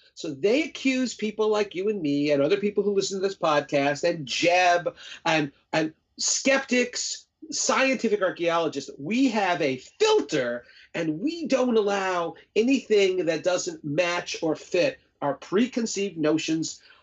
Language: English